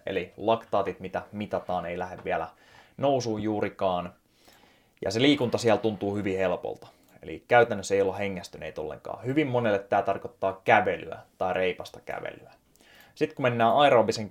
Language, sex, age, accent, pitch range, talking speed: Finnish, male, 20-39, native, 95-115 Hz, 145 wpm